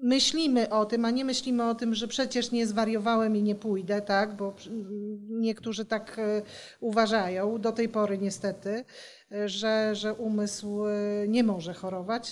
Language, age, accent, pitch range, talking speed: Polish, 40-59, native, 200-245 Hz, 145 wpm